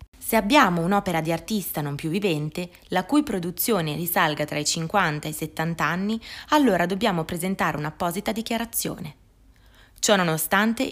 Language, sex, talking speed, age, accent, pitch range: Italian, female, 145 wpm, 20-39, native, 160-220 Hz